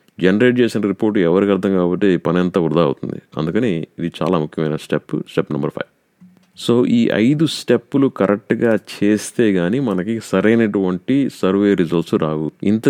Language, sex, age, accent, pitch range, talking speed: Telugu, male, 30-49, native, 90-115 Hz, 145 wpm